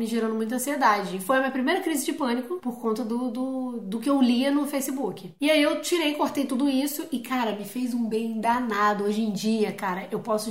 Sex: female